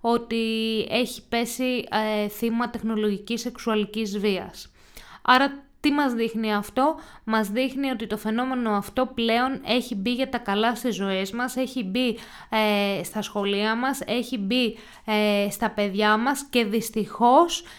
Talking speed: 140 wpm